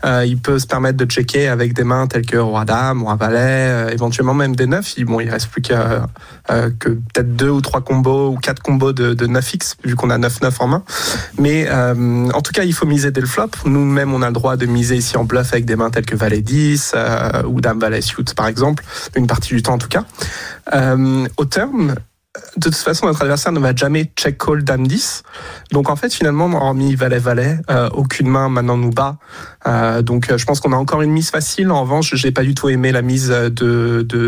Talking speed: 240 wpm